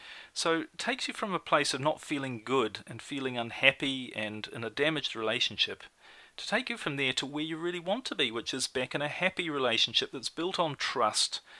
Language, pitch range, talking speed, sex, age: English, 125-160 Hz, 215 wpm, male, 40-59